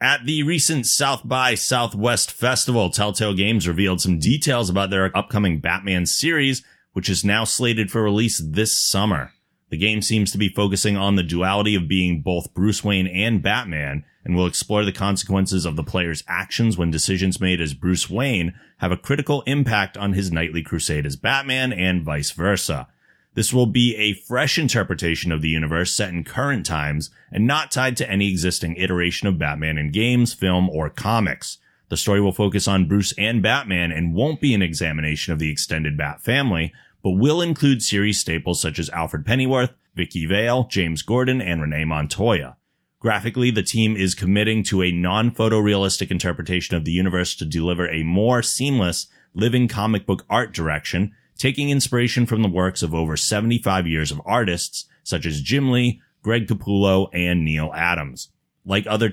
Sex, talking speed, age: male, 175 wpm, 30-49